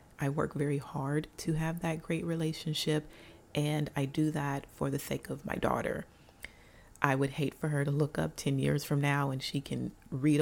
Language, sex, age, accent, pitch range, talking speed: English, female, 30-49, American, 135-165 Hz, 200 wpm